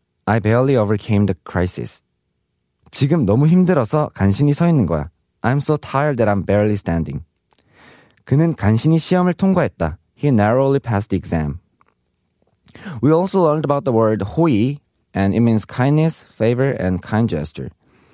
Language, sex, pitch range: Korean, male, 95-145 Hz